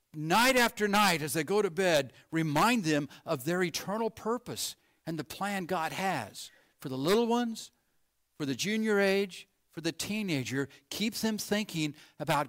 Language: English